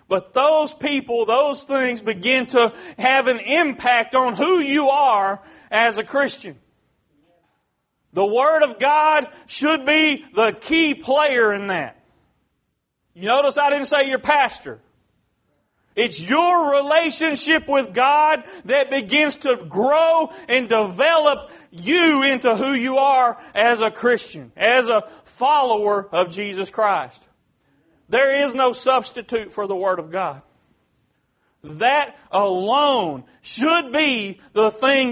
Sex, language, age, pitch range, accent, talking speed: male, English, 40-59, 225-295 Hz, American, 130 wpm